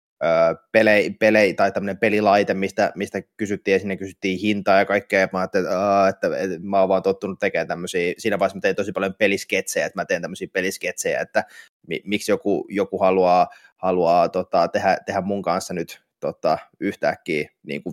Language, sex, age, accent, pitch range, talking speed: Finnish, male, 20-39, native, 95-110 Hz, 170 wpm